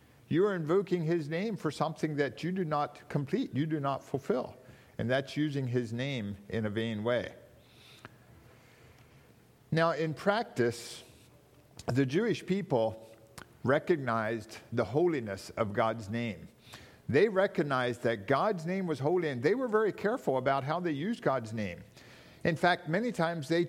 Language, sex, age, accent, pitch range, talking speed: English, male, 50-69, American, 125-170 Hz, 150 wpm